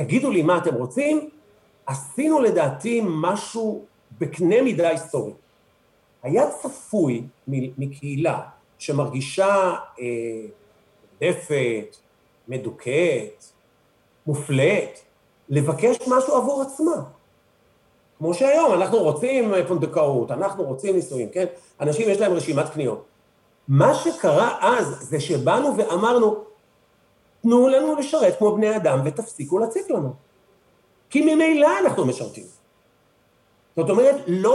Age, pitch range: 50-69, 150-245 Hz